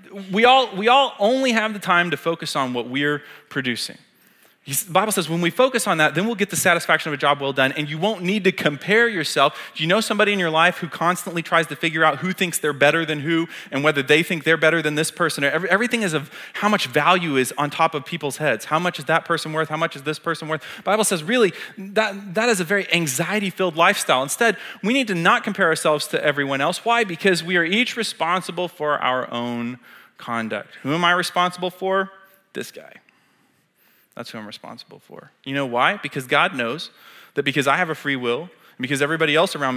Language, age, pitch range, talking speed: English, 30-49, 135-185 Hz, 235 wpm